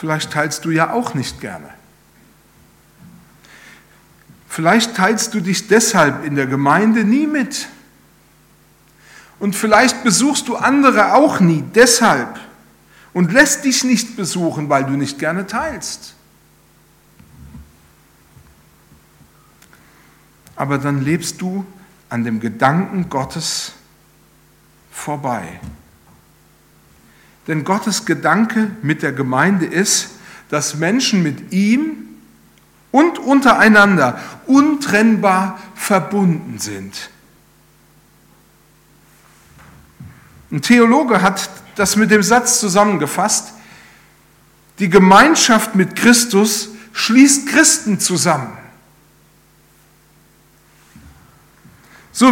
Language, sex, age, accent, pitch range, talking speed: German, male, 60-79, German, 155-235 Hz, 85 wpm